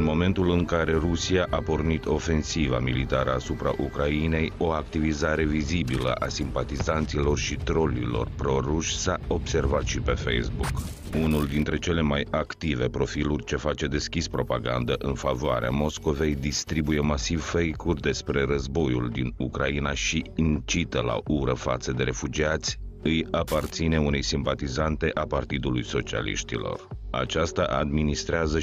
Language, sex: Romanian, male